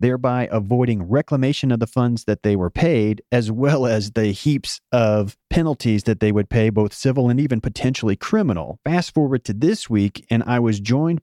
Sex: male